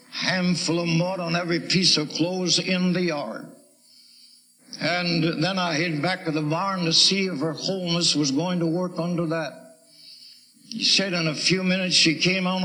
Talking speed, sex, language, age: 185 wpm, male, English, 60-79